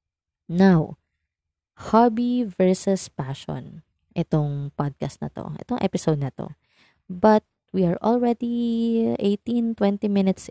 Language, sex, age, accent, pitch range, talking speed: Filipino, female, 20-39, native, 150-190 Hz, 105 wpm